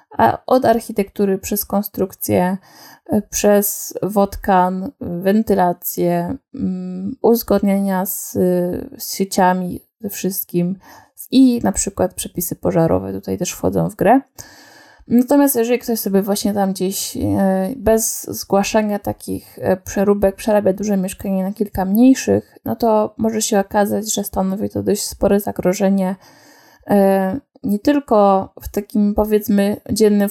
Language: Polish